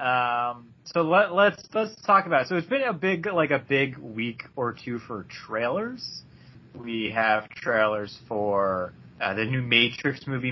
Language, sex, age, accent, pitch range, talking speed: English, male, 20-39, American, 110-145 Hz, 170 wpm